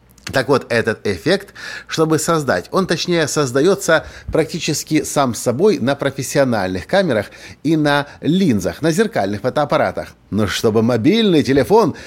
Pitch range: 115-155 Hz